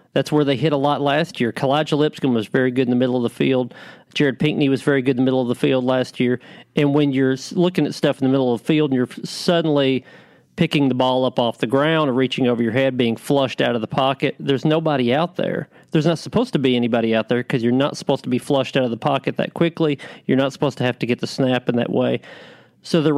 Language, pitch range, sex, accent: English, 125-150 Hz, male, American